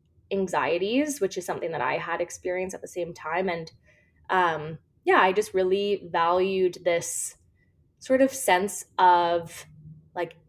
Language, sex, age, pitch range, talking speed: English, female, 20-39, 170-220 Hz, 145 wpm